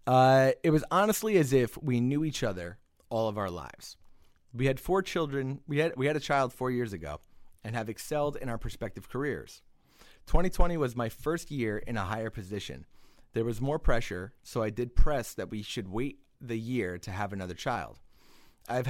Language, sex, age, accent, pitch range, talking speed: English, male, 30-49, American, 105-145 Hz, 195 wpm